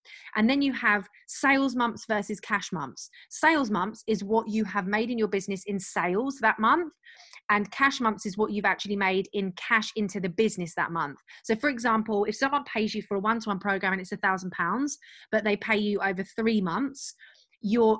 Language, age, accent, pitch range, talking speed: English, 30-49, British, 195-230 Hz, 205 wpm